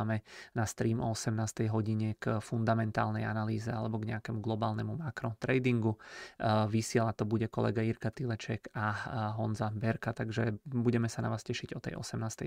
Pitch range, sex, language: 110-120 Hz, male, Czech